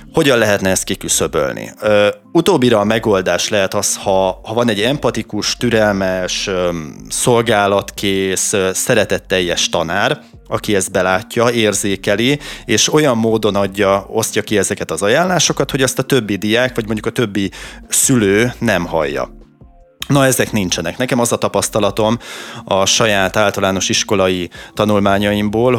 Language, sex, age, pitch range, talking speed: Hungarian, male, 30-49, 95-115 Hz, 130 wpm